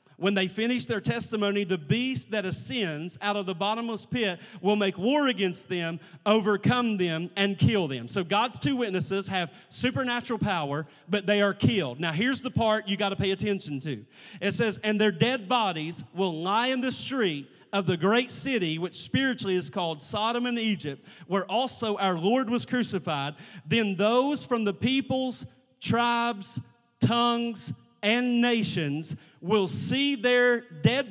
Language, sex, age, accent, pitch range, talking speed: English, male, 40-59, American, 180-230 Hz, 165 wpm